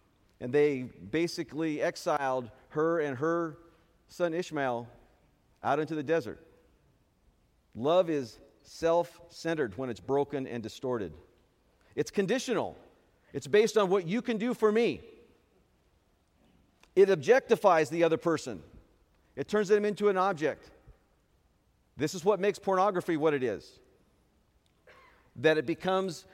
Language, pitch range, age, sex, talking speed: English, 140-195 Hz, 50-69, male, 125 wpm